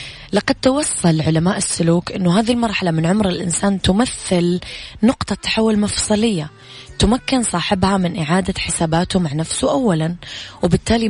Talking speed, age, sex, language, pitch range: 125 wpm, 20-39, female, English, 170-200 Hz